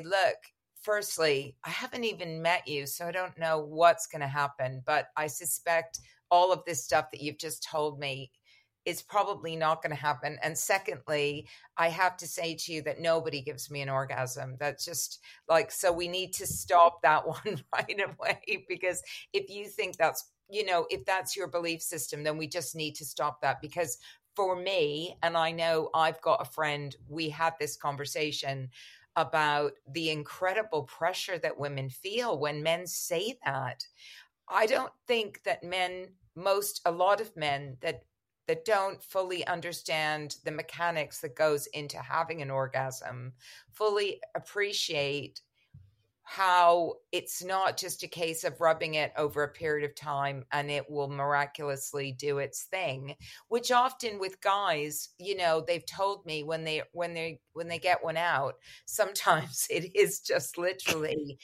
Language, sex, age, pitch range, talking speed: English, female, 50-69, 145-180 Hz, 170 wpm